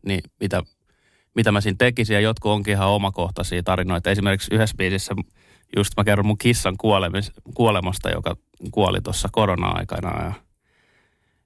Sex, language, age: male, Finnish, 20-39